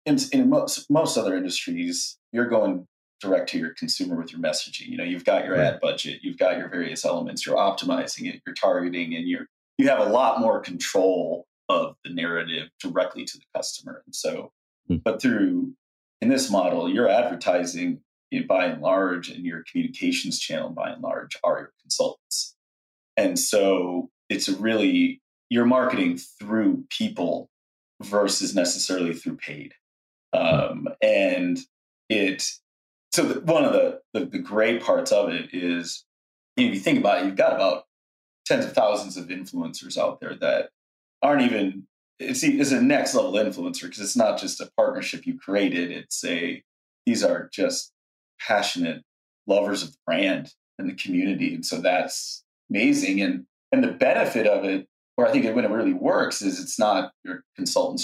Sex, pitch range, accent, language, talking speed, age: male, 255-280 Hz, American, English, 170 wpm, 30-49